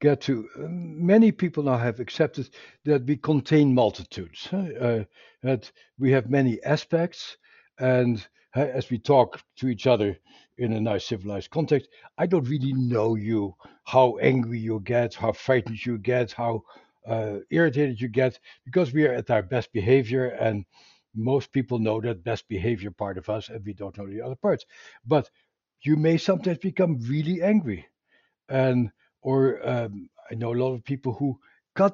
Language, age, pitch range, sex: English, 60-79, 115-150 Hz, male